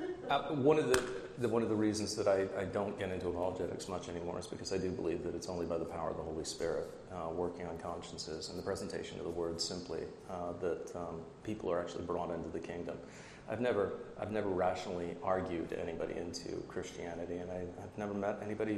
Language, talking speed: English, 220 wpm